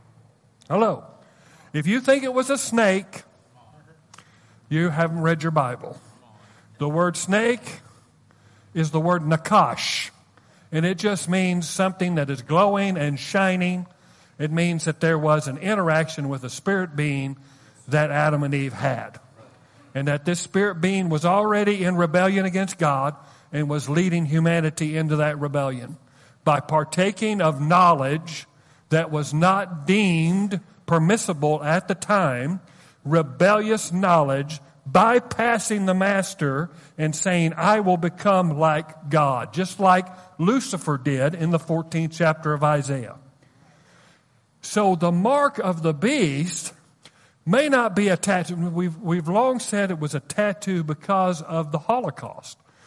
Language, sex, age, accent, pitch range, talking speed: English, male, 50-69, American, 145-185 Hz, 135 wpm